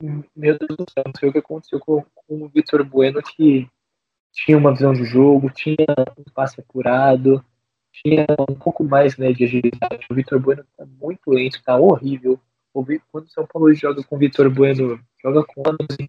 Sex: male